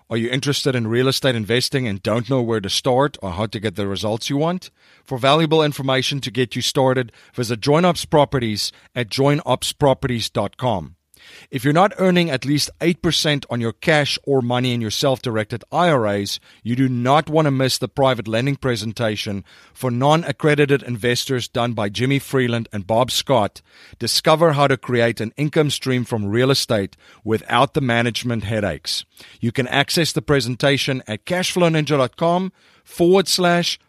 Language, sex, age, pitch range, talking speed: English, male, 40-59, 115-150 Hz, 160 wpm